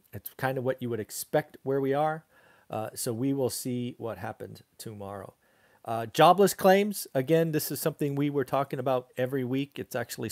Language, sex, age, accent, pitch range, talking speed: English, male, 40-59, American, 120-155 Hz, 190 wpm